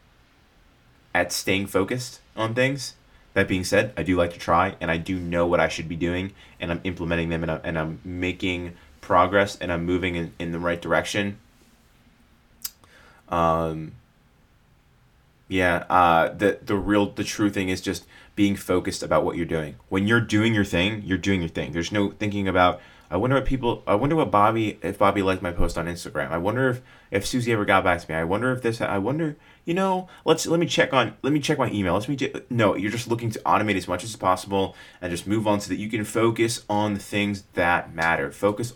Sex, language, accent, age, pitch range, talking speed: male, English, American, 20-39, 85-105 Hz, 220 wpm